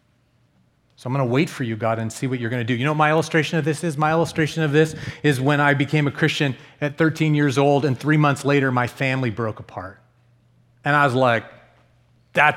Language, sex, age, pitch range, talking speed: English, male, 30-49, 120-150 Hz, 240 wpm